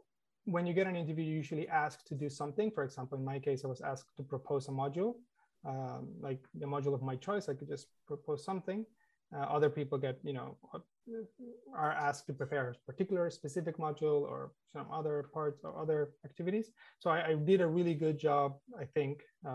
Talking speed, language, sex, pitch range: 205 wpm, English, male, 140-165 Hz